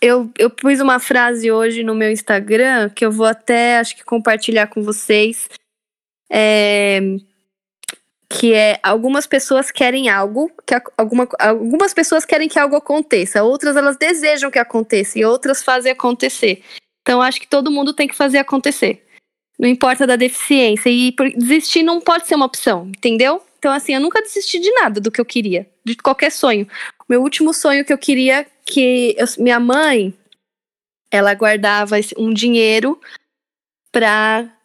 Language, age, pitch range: Portuguese, 10-29, 225-275 Hz